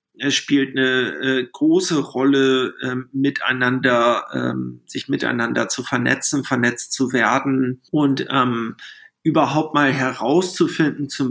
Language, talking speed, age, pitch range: German, 115 wpm, 50-69, 125-150 Hz